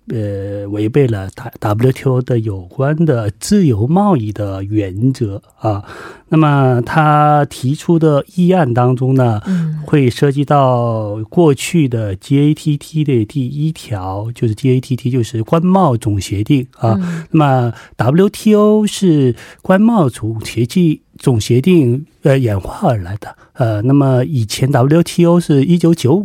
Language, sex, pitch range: Korean, male, 115-165 Hz